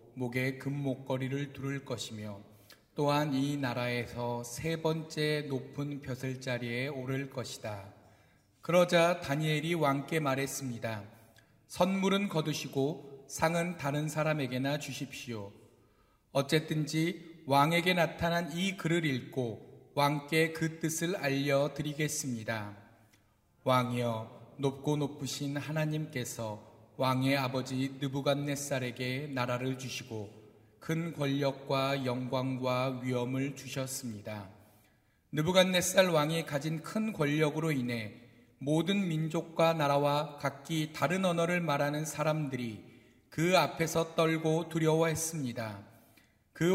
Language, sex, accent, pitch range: Korean, male, native, 125-160 Hz